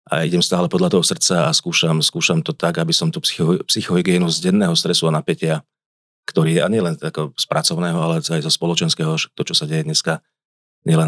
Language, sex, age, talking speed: Slovak, male, 40-59, 200 wpm